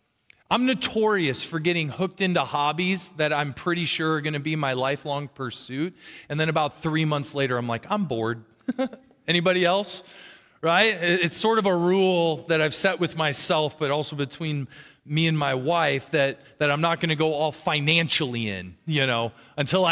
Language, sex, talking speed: English, male, 185 wpm